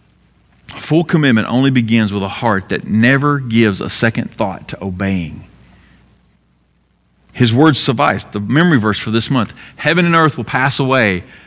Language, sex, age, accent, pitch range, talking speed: English, male, 50-69, American, 110-165 Hz, 155 wpm